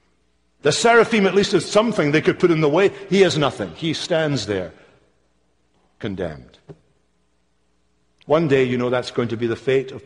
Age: 50-69